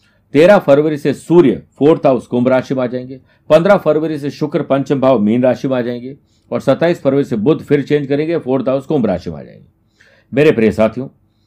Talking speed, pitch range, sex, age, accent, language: 210 wpm, 120-150 Hz, male, 50-69, native, Hindi